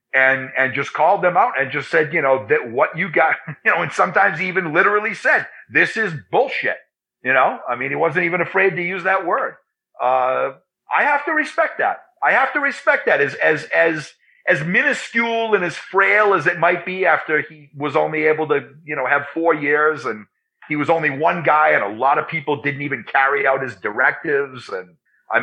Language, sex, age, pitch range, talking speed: English, male, 40-59, 135-175 Hz, 210 wpm